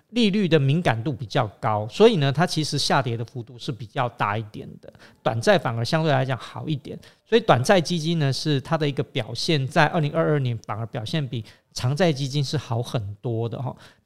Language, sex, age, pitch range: Chinese, male, 40-59, 130-170 Hz